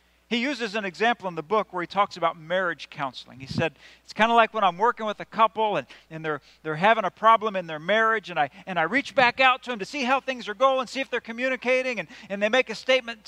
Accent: American